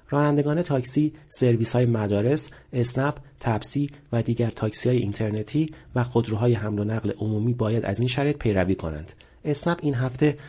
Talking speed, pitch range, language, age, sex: 145 wpm, 110-145 Hz, Persian, 40-59, male